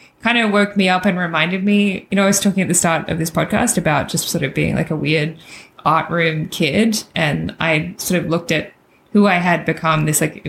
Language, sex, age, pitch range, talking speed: English, female, 20-39, 155-185 Hz, 240 wpm